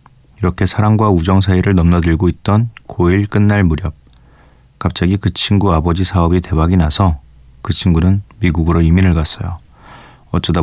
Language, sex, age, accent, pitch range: Korean, male, 30-49, native, 80-100 Hz